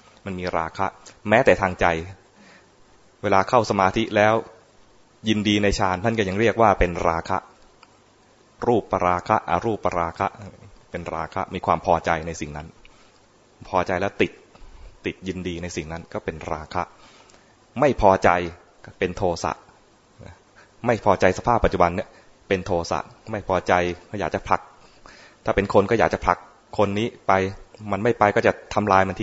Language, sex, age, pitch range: English, male, 20-39, 90-110 Hz